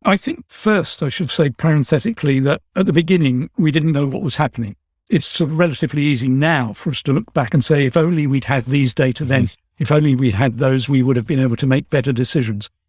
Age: 60-79